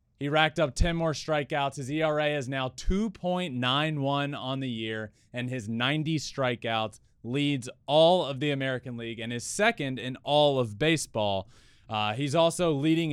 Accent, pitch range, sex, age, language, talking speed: American, 110-155 Hz, male, 20-39, English, 160 wpm